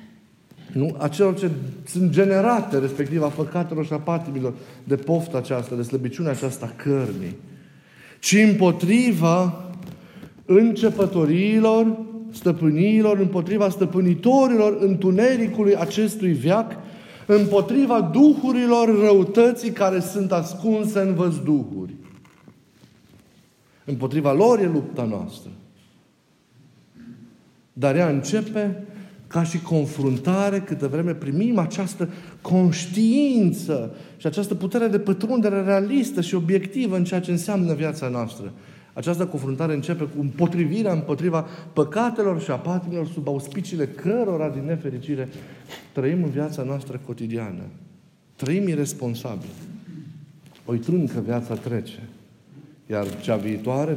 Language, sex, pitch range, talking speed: Romanian, male, 140-200 Hz, 105 wpm